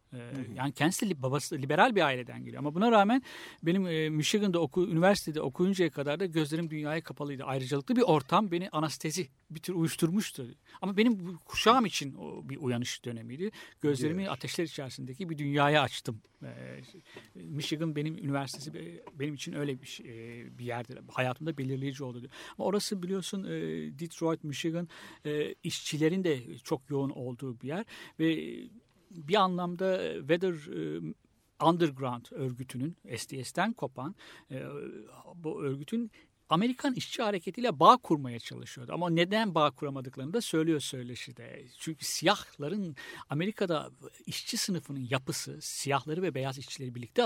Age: 60-79